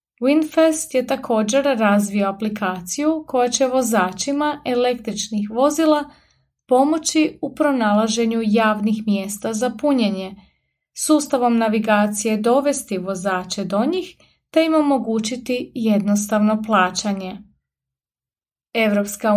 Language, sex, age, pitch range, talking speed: Croatian, female, 30-49, 205-265 Hz, 90 wpm